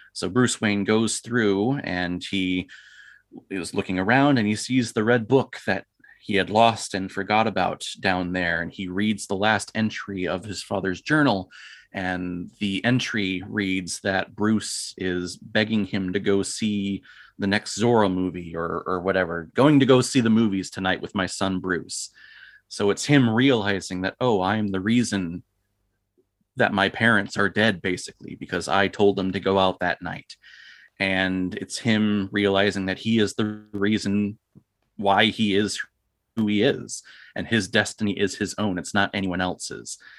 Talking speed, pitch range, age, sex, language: 170 wpm, 95-110 Hz, 30-49, male, English